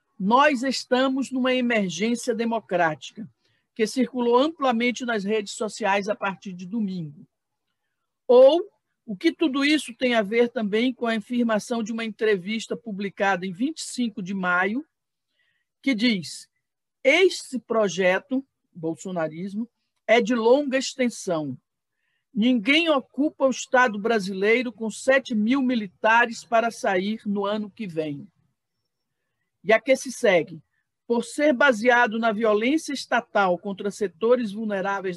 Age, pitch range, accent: 50-69, 200-255 Hz, Brazilian